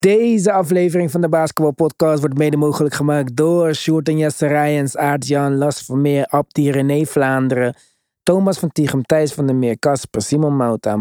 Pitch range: 125-165 Hz